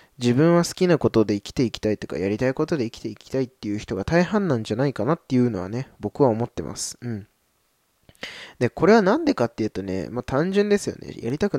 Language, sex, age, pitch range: Japanese, male, 20-39, 110-160 Hz